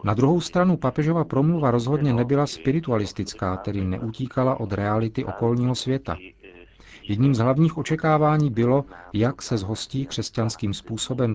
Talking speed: 125 wpm